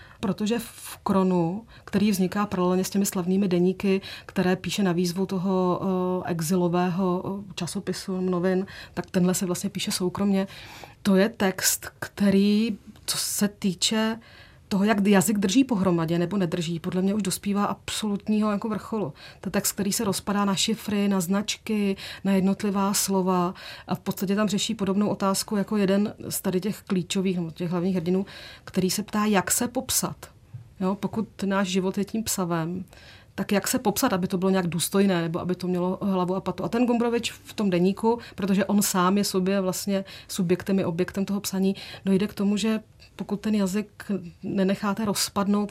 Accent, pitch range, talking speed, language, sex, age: native, 185-205 Hz, 170 wpm, Czech, female, 30-49